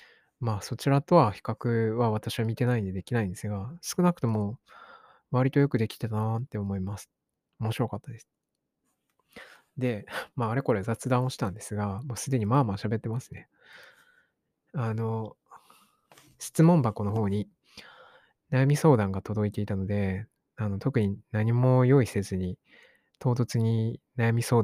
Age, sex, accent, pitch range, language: 20-39, male, native, 105-135 Hz, Japanese